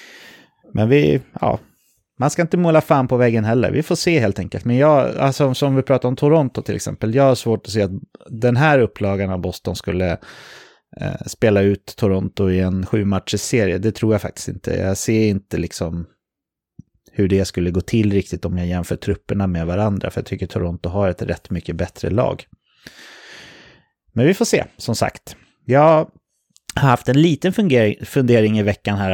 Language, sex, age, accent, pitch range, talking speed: English, male, 30-49, Swedish, 95-130 Hz, 195 wpm